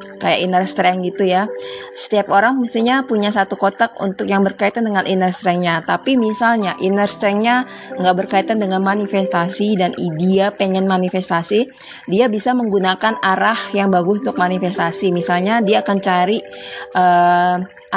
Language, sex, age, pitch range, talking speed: Indonesian, female, 20-39, 185-220 Hz, 140 wpm